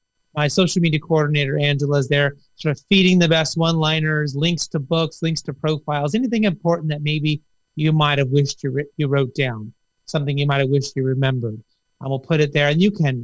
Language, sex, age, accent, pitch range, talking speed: English, male, 30-49, American, 135-170 Hz, 205 wpm